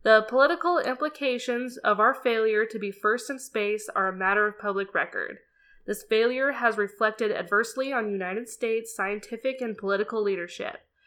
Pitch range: 205-245 Hz